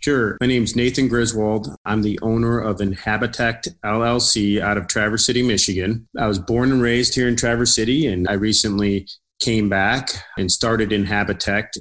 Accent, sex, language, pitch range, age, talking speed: American, male, English, 100-120 Hz, 30-49, 175 wpm